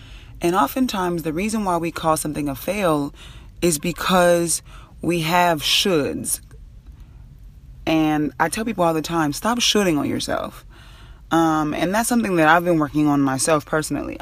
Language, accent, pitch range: English, American, 140-175 Hz